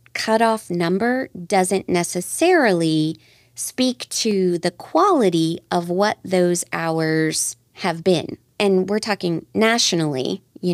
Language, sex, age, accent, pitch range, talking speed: English, female, 30-49, American, 155-195 Hz, 105 wpm